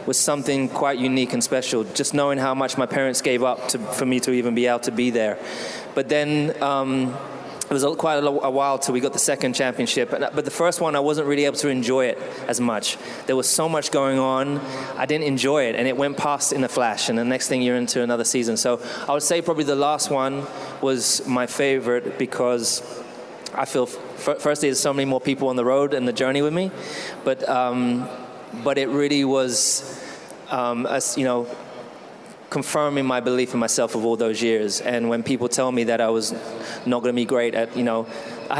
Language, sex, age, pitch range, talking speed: English, male, 20-39, 120-140 Hz, 220 wpm